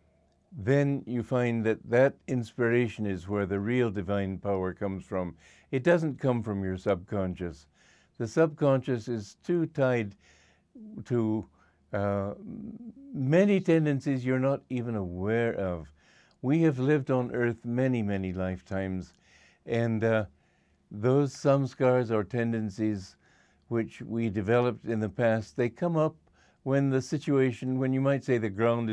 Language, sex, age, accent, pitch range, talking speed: English, male, 60-79, American, 105-130 Hz, 135 wpm